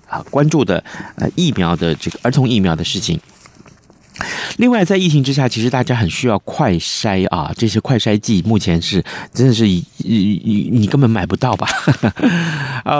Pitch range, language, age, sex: 95-135 Hz, Chinese, 30-49, male